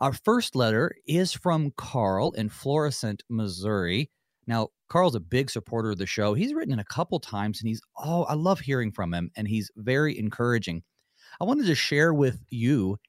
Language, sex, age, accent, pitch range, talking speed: English, male, 30-49, American, 105-150 Hz, 190 wpm